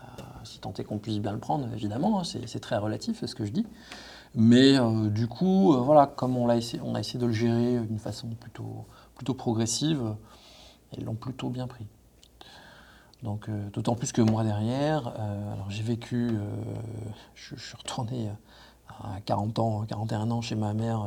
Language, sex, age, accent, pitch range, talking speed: French, male, 40-59, French, 105-120 Hz, 185 wpm